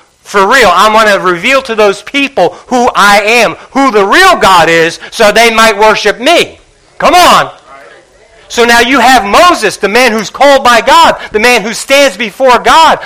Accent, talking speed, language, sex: American, 190 wpm, English, male